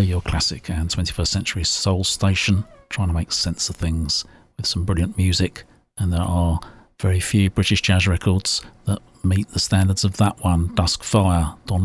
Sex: male